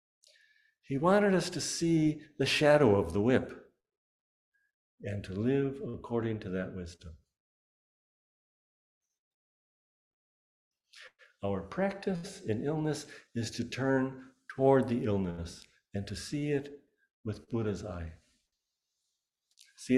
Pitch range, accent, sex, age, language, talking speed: 100-145 Hz, American, male, 60-79, English, 105 wpm